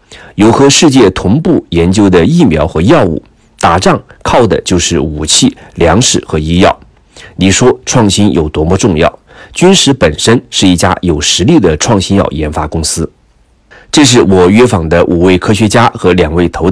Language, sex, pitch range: Chinese, male, 85-110 Hz